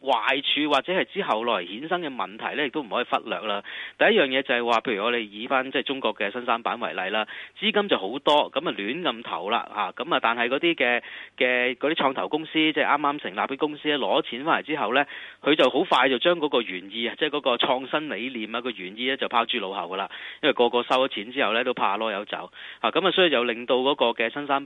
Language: Chinese